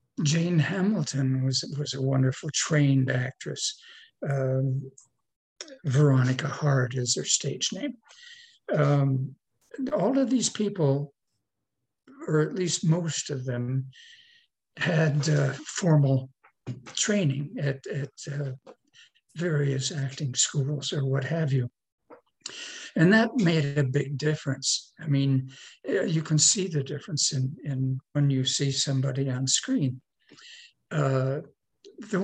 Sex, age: male, 60-79